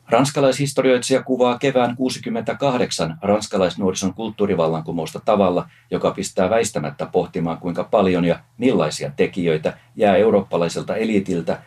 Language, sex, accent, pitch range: Finnish, male, native, 90-120 Hz